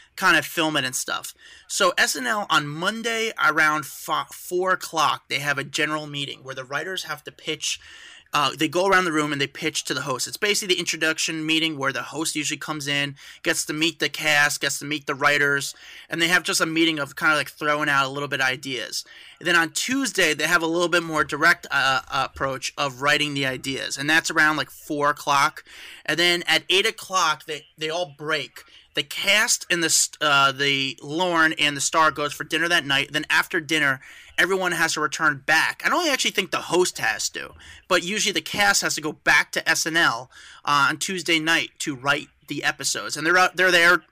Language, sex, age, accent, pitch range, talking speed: English, male, 30-49, American, 145-175 Hz, 215 wpm